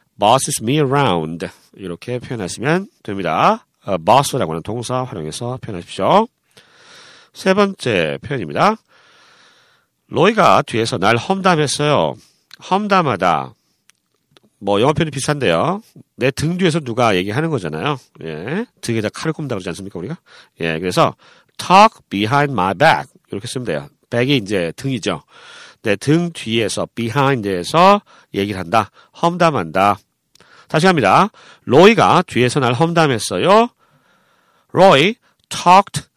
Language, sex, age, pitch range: Korean, male, 40-59, 110-180 Hz